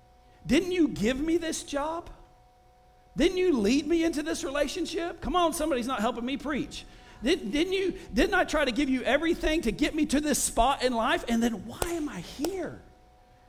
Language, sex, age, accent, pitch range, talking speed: English, male, 50-69, American, 230-305 Hz, 195 wpm